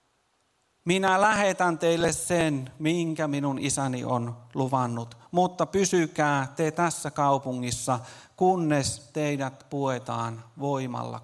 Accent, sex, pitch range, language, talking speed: native, male, 135-175 Hz, Finnish, 95 wpm